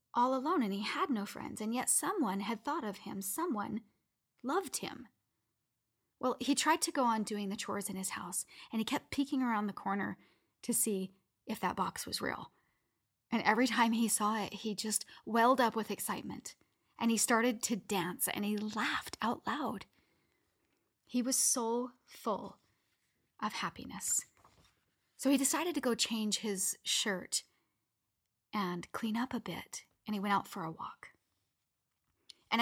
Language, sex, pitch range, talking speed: English, female, 195-245 Hz, 170 wpm